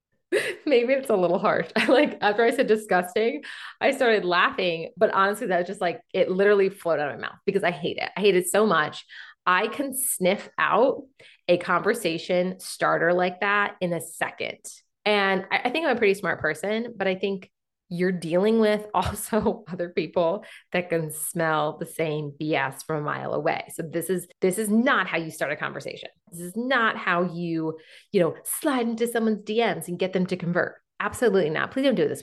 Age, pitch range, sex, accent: 30-49, 170-225 Hz, female, American